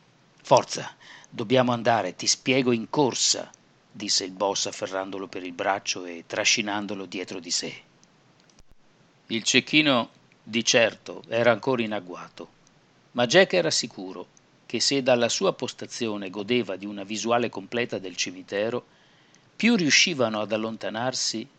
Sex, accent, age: male, native, 50-69